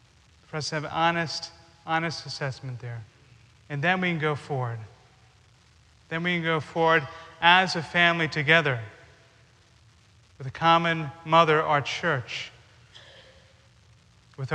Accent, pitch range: American, 120-155 Hz